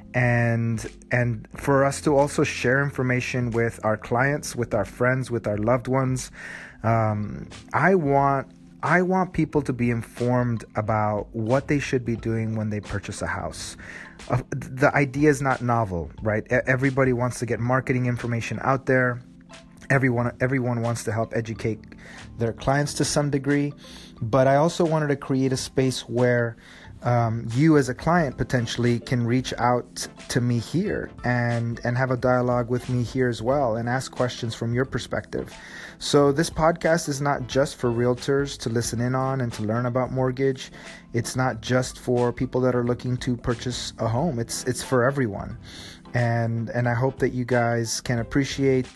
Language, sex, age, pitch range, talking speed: English, male, 30-49, 115-135 Hz, 175 wpm